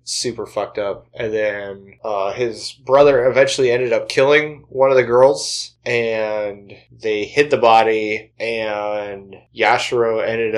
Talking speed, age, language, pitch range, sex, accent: 135 wpm, 20-39, English, 110-130 Hz, male, American